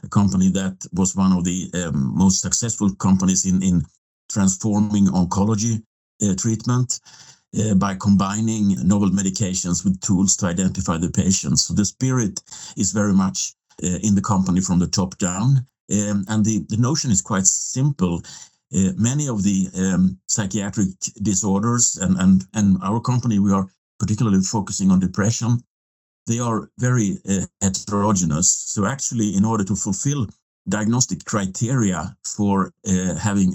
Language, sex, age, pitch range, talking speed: English, male, 60-79, 95-110 Hz, 150 wpm